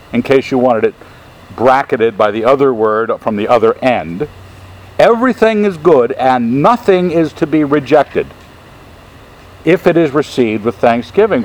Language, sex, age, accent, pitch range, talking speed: English, male, 60-79, American, 100-135 Hz, 150 wpm